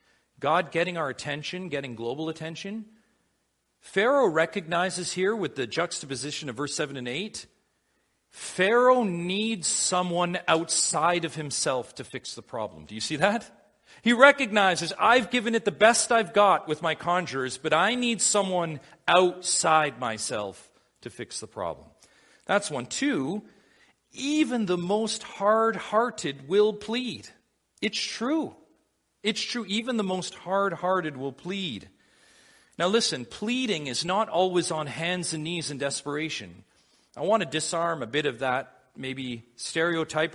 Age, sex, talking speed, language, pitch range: 40-59, male, 140 wpm, English, 155-215 Hz